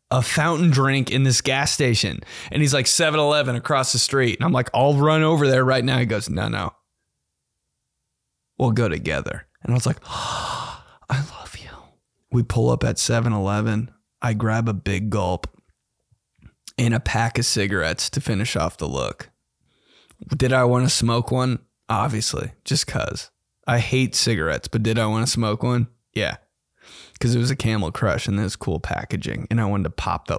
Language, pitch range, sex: English, 110-125 Hz, male